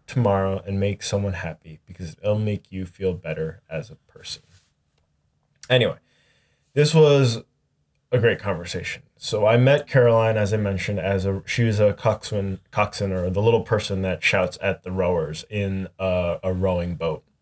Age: 20-39